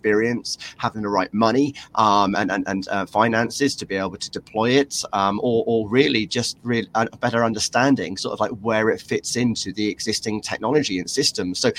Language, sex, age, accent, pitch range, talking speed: English, male, 30-49, British, 105-130 Hz, 200 wpm